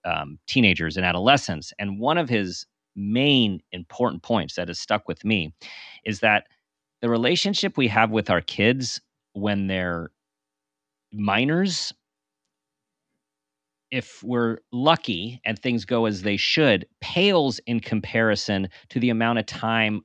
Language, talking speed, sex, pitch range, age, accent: English, 135 wpm, male, 90-120 Hz, 40-59, American